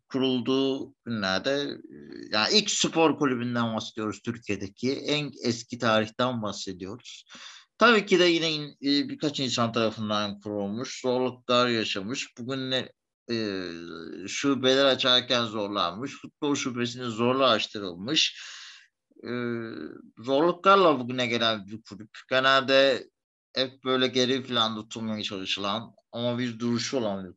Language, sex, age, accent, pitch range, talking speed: Turkish, male, 50-69, native, 110-140 Hz, 105 wpm